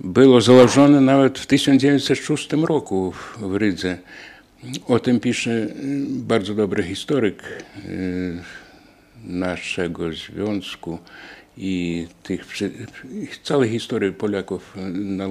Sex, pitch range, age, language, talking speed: male, 100-135 Hz, 60-79, Polish, 80 wpm